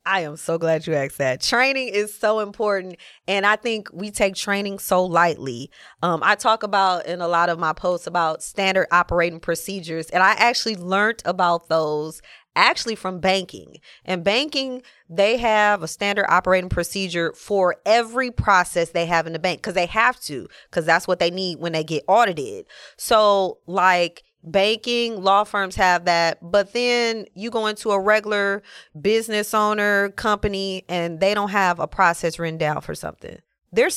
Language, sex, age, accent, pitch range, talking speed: English, female, 20-39, American, 175-220 Hz, 175 wpm